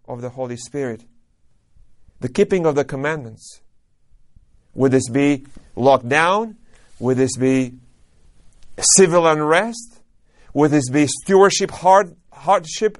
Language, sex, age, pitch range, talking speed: English, male, 40-59, 125-165 Hz, 115 wpm